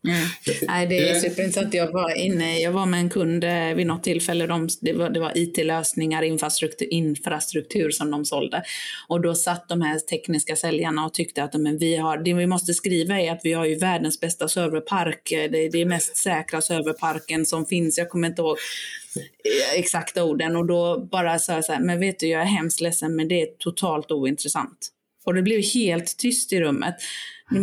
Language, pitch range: Swedish, 160-185 Hz